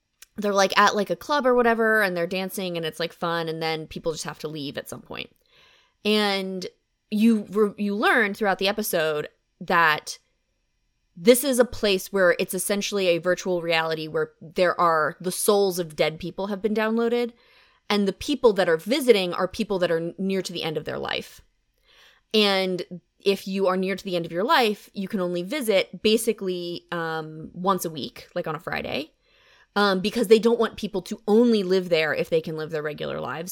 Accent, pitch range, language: American, 170-220 Hz, English